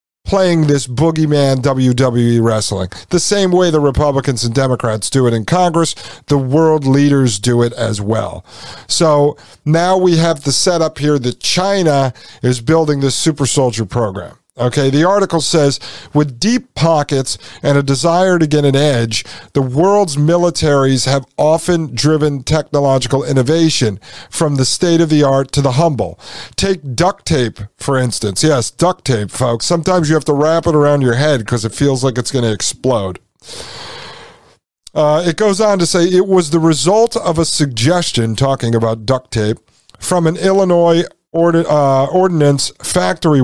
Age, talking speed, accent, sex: 50-69, 165 wpm, American, male